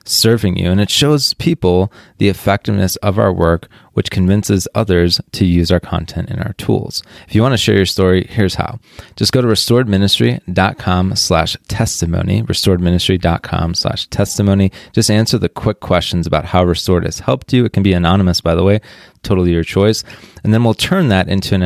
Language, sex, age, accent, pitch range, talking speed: English, male, 20-39, American, 90-110 Hz, 185 wpm